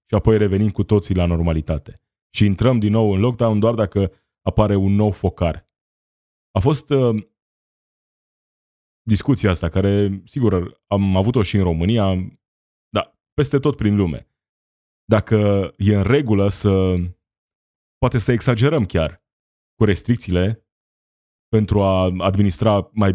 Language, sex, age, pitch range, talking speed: Romanian, male, 20-39, 90-110 Hz, 130 wpm